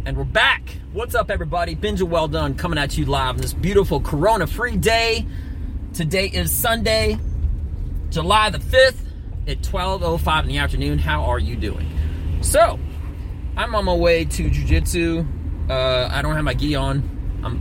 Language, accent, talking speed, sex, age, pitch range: English, American, 165 wpm, male, 30-49, 75-100 Hz